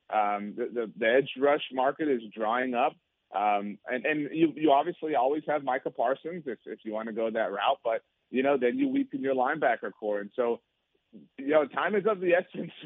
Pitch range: 110-155 Hz